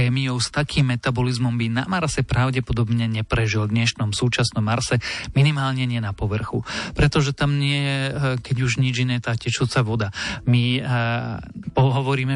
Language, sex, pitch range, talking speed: Slovak, male, 115-130 Hz, 150 wpm